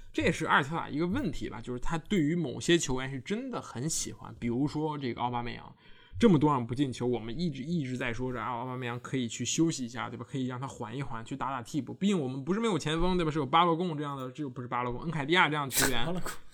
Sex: male